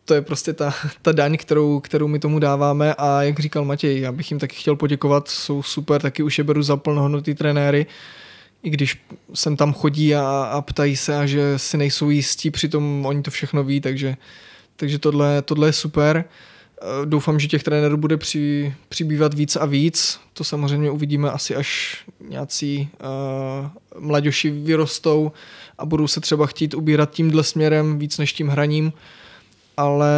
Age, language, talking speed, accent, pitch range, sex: 20-39, Czech, 165 wpm, native, 145-155 Hz, male